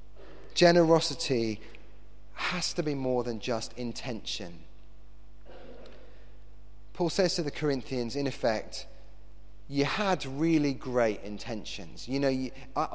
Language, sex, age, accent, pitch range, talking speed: English, male, 30-49, British, 110-150 Hz, 110 wpm